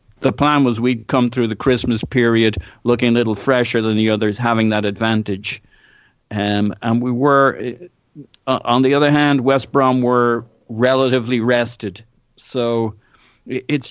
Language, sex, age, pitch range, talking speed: English, male, 50-69, 110-130 Hz, 150 wpm